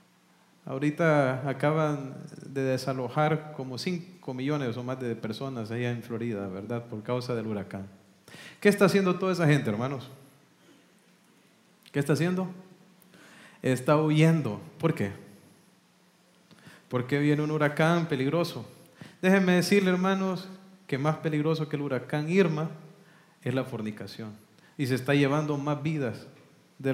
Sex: male